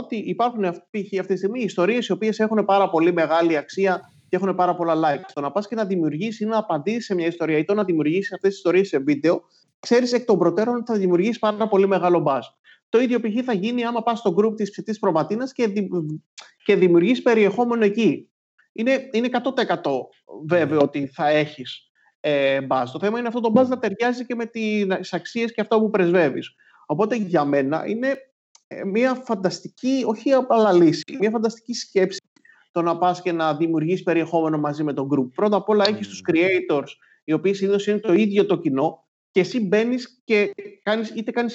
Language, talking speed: Greek, 195 wpm